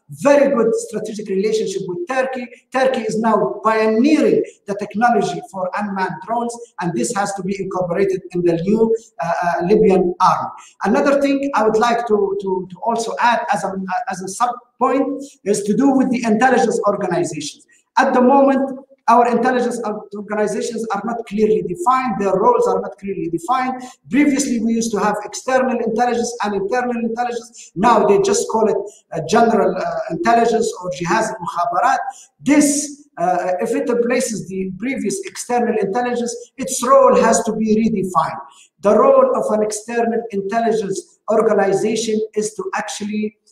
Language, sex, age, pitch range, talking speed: Turkish, male, 50-69, 205-255 Hz, 155 wpm